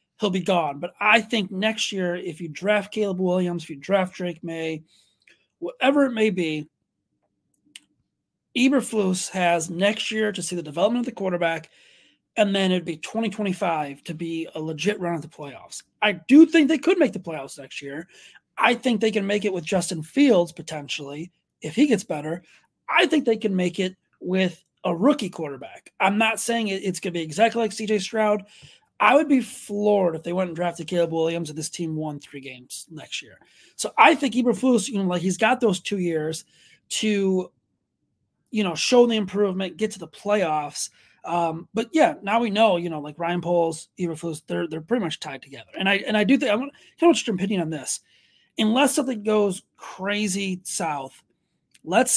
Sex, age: male, 30-49